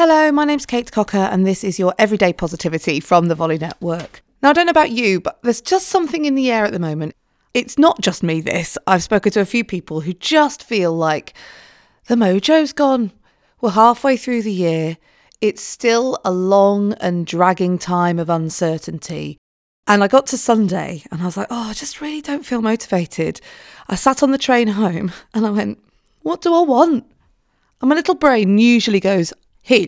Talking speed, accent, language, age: 200 wpm, British, English, 30-49